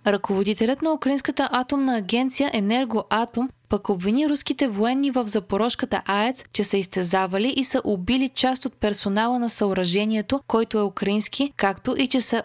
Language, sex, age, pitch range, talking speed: Bulgarian, female, 20-39, 195-245 Hz, 150 wpm